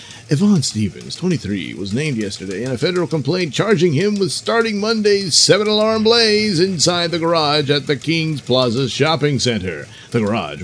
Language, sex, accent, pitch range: English, male, American, 115-170 Hz